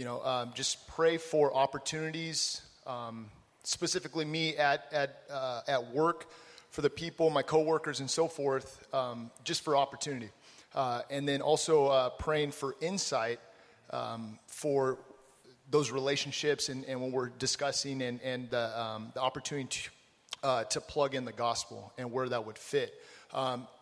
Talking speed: 160 wpm